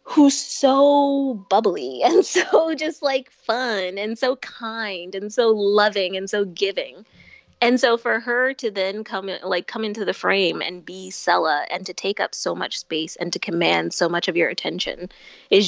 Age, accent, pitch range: 20-39, American, 180-235 Hz